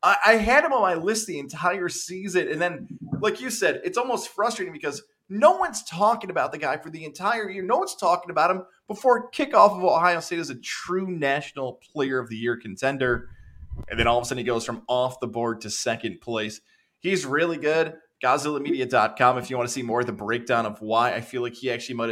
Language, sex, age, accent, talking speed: English, male, 20-39, American, 225 wpm